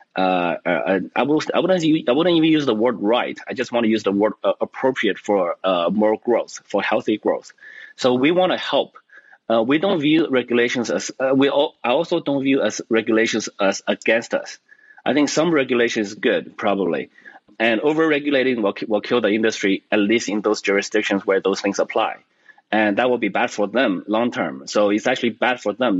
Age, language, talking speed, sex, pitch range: 30-49, English, 210 wpm, male, 105-135 Hz